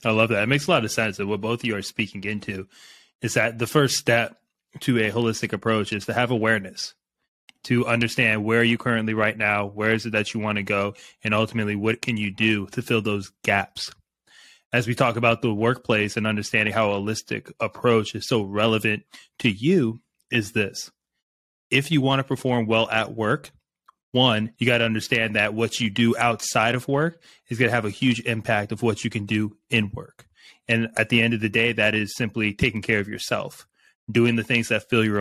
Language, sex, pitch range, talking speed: English, male, 110-120 Hz, 220 wpm